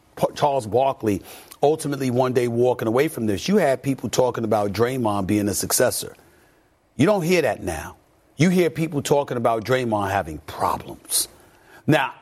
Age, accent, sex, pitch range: 40-59, American, male, 120-190 Hz